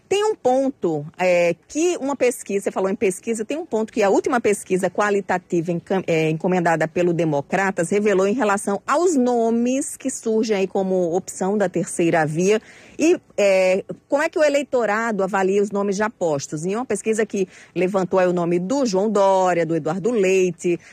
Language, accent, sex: Portuguese, Brazilian, female